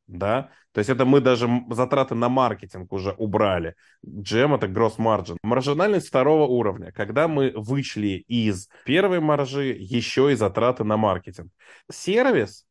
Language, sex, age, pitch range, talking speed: Russian, male, 20-39, 110-145 Hz, 140 wpm